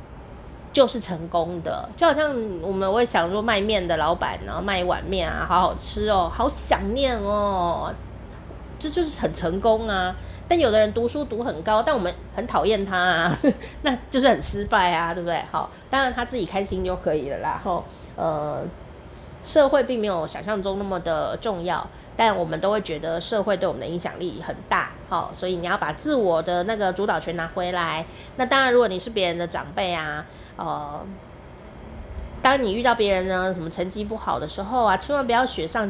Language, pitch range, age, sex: Chinese, 175-255 Hz, 30-49, female